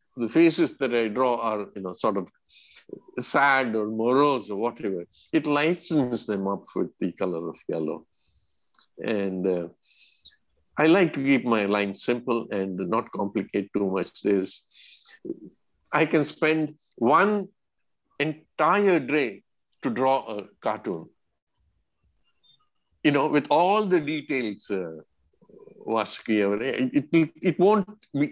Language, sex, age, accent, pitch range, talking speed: Kannada, male, 50-69, native, 110-155 Hz, 135 wpm